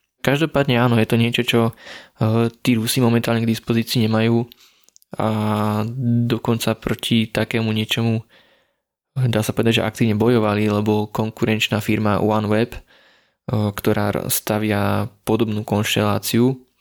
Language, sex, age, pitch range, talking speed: Slovak, male, 20-39, 105-115 Hz, 110 wpm